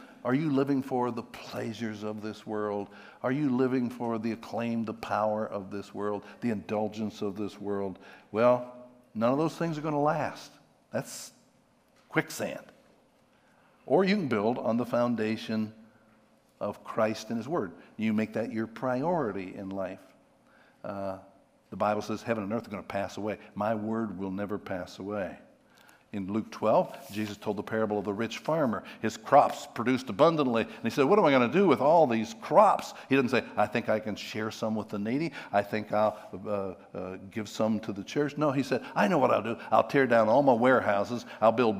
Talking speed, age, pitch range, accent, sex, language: 195 wpm, 60-79, 105-120 Hz, American, male, English